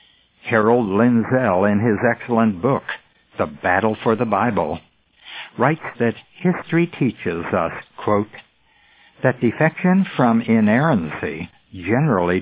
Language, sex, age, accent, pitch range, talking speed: English, male, 60-79, American, 105-135 Hz, 105 wpm